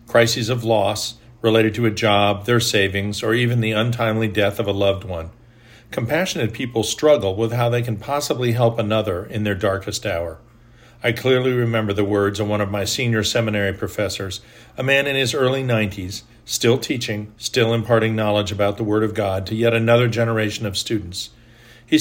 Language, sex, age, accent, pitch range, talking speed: English, male, 50-69, American, 105-120 Hz, 185 wpm